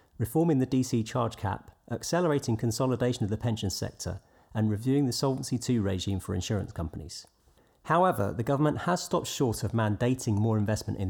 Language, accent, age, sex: English, British, 40-59, male